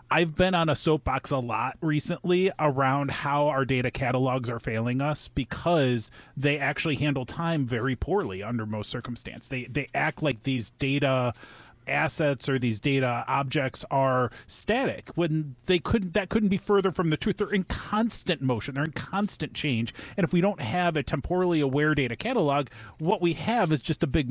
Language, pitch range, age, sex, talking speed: English, 135-180 Hz, 30-49, male, 185 wpm